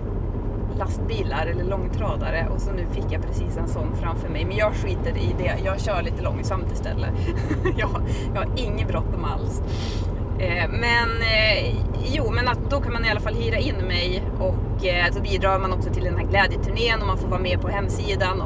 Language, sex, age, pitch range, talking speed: Swedish, female, 30-49, 95-110 Hz, 180 wpm